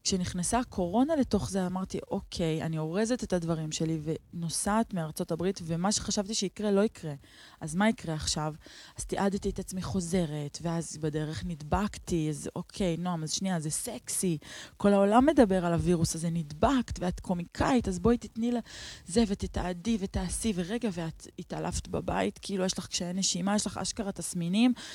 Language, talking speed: Hebrew, 160 wpm